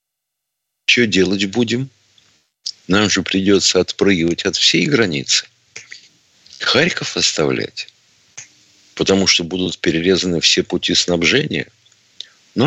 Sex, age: male, 50-69